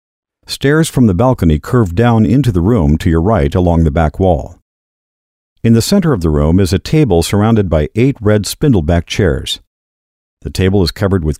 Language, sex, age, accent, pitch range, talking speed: English, male, 50-69, American, 80-120 Hz, 190 wpm